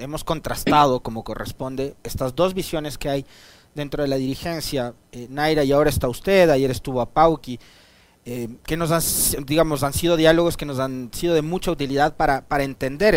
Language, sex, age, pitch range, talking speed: Spanish, male, 40-59, 135-195 Hz, 180 wpm